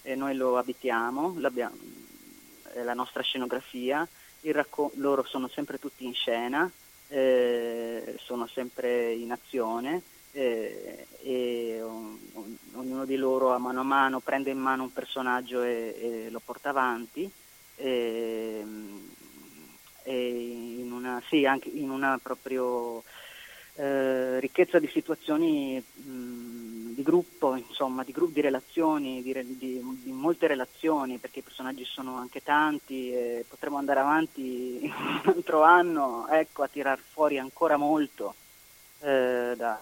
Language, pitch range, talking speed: Italian, 125-145 Hz, 140 wpm